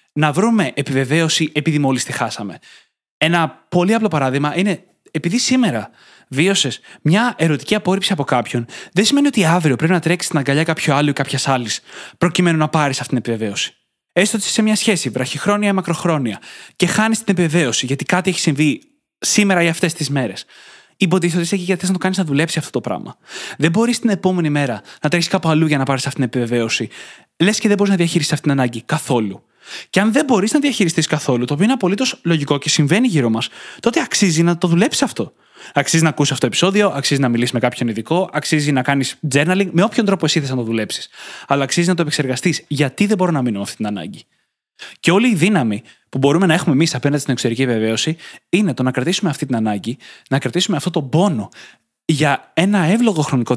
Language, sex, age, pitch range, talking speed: Greek, male, 20-39, 135-185 Hz, 215 wpm